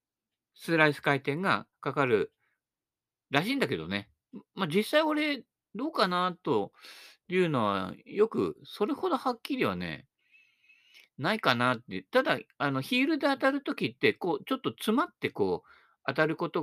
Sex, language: male, Japanese